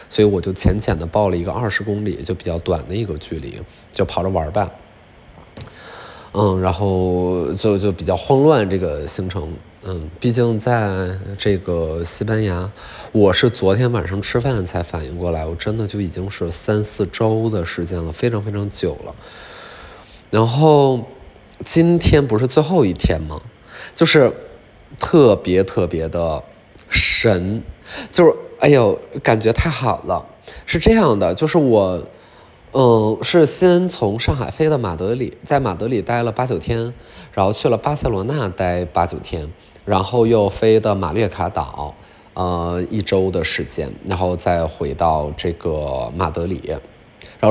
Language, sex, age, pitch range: Chinese, male, 20-39, 90-115 Hz